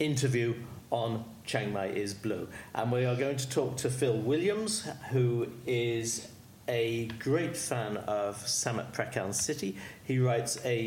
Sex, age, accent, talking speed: male, 50-69, British, 150 wpm